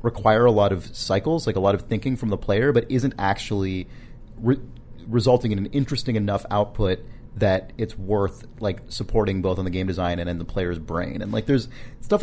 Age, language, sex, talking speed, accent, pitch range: 30-49, English, male, 205 wpm, American, 95-125 Hz